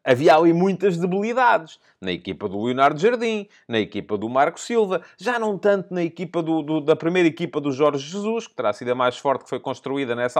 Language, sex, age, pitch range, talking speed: Portuguese, male, 30-49, 130-190 Hz, 215 wpm